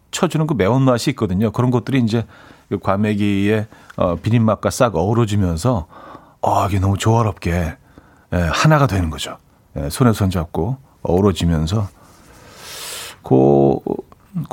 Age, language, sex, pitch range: 40-59, Korean, male, 100-140 Hz